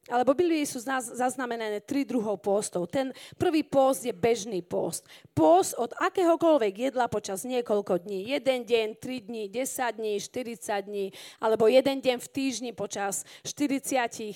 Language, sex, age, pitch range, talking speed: Slovak, female, 40-59, 220-275 Hz, 150 wpm